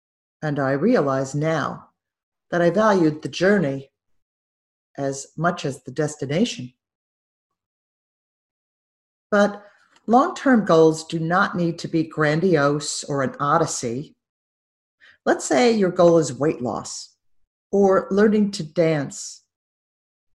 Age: 50-69